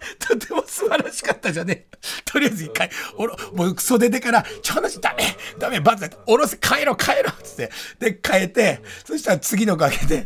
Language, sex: Japanese, male